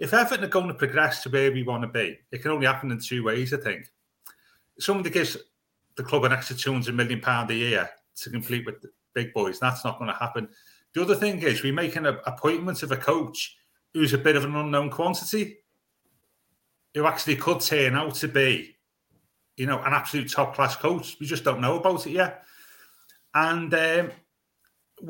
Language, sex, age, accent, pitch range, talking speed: English, male, 40-59, British, 130-175 Hz, 200 wpm